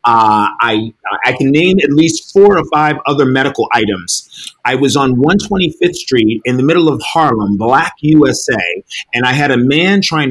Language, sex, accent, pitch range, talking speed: English, male, American, 115-155 Hz, 180 wpm